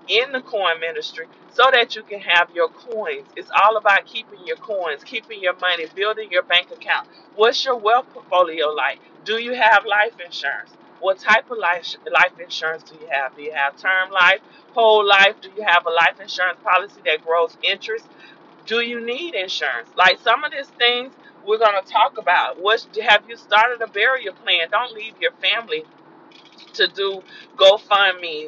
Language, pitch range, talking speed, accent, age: English, 180-260 Hz, 180 wpm, American, 40-59